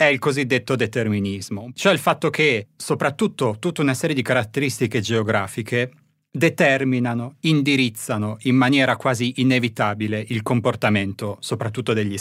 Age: 30-49